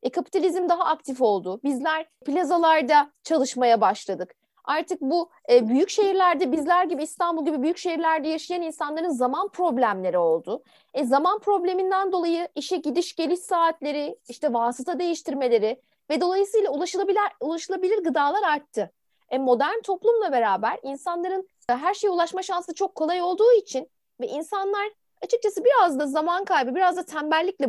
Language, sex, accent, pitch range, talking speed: Turkish, female, native, 285-385 Hz, 140 wpm